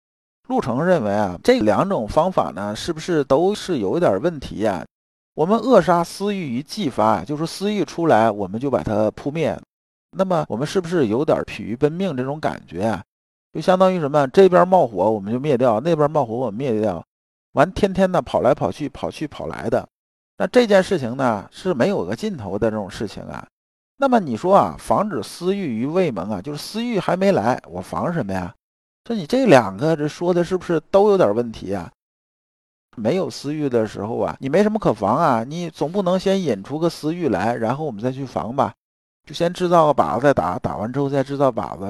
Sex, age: male, 50-69